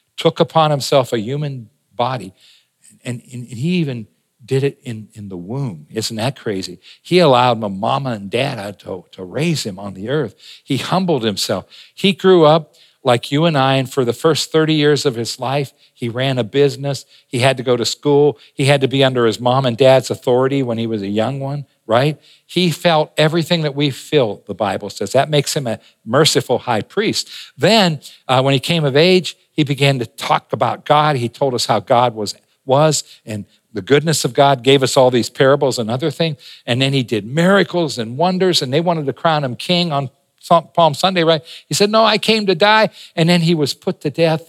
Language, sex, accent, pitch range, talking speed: English, male, American, 120-165 Hz, 210 wpm